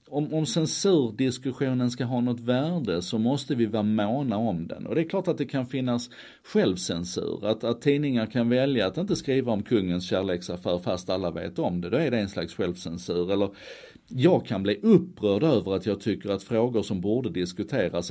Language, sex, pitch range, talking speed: Swedish, male, 95-130 Hz, 195 wpm